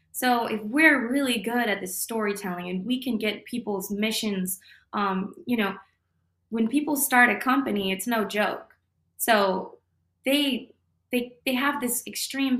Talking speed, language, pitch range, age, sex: 150 wpm, English, 200-260 Hz, 20-39, female